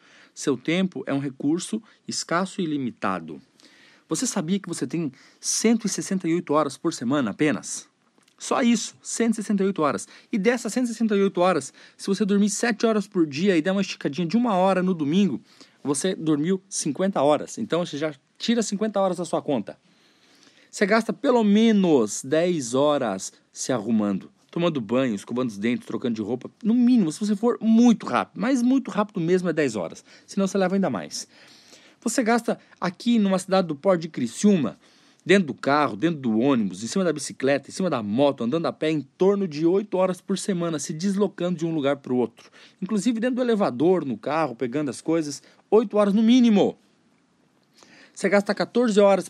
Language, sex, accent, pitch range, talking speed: Portuguese, male, Brazilian, 155-220 Hz, 180 wpm